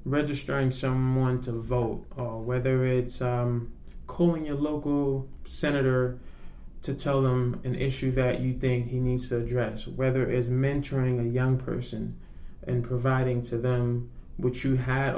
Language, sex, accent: English, male, American